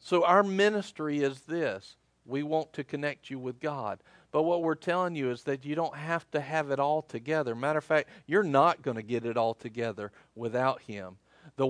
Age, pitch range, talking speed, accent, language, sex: 50-69, 115-160 Hz, 210 wpm, American, English, male